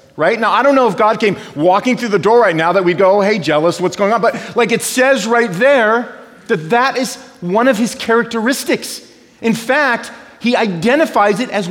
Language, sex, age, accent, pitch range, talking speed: English, male, 40-59, American, 180-235 Hz, 215 wpm